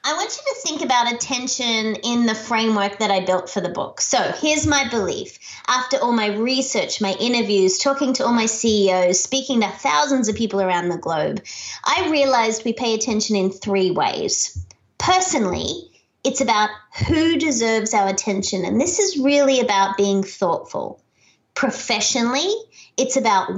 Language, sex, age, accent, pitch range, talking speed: English, female, 30-49, Australian, 190-265 Hz, 165 wpm